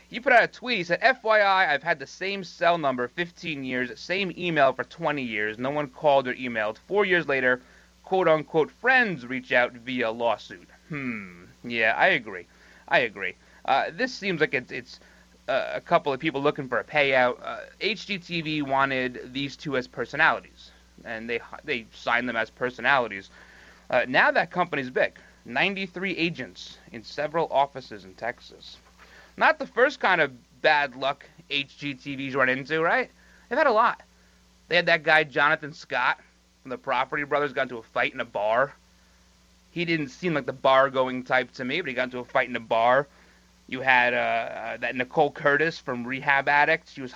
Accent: American